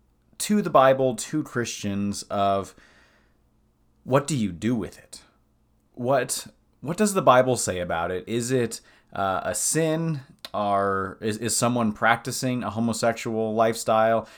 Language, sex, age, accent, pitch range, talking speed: English, male, 30-49, American, 100-115 Hz, 140 wpm